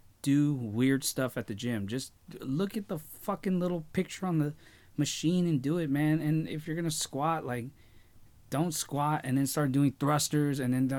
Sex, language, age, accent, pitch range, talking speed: male, English, 20-39, American, 105-150 Hz, 190 wpm